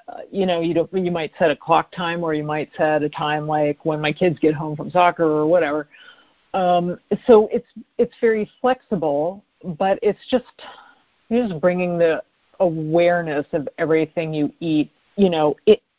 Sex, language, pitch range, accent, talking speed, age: female, English, 160-205 Hz, American, 175 wpm, 50-69